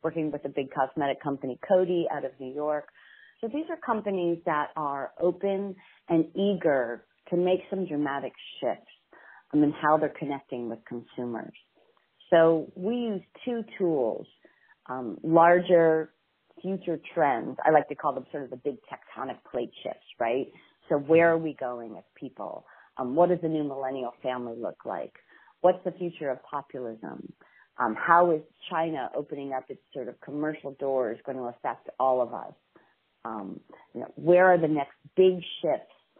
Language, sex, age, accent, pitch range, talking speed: English, female, 40-59, American, 130-175 Hz, 160 wpm